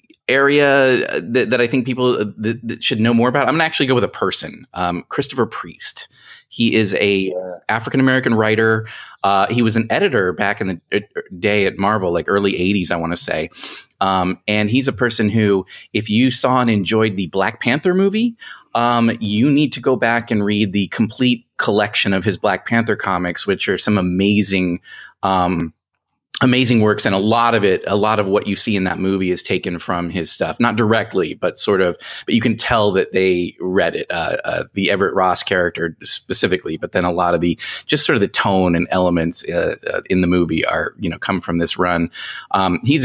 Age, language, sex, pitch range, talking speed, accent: 30-49, English, male, 95-125 Hz, 205 wpm, American